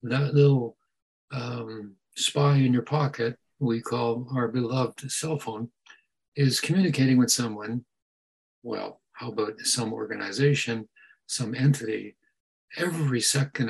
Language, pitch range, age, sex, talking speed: English, 115-145 Hz, 60-79, male, 115 wpm